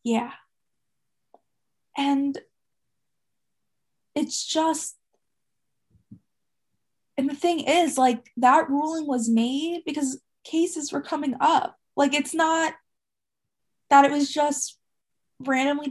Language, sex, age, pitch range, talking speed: English, female, 20-39, 240-290 Hz, 100 wpm